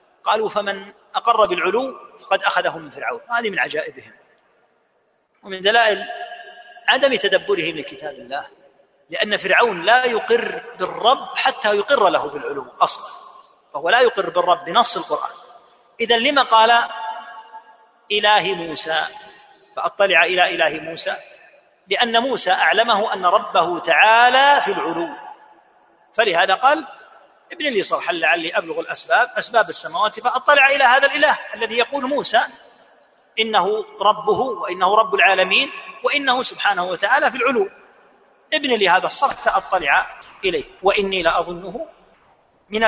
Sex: male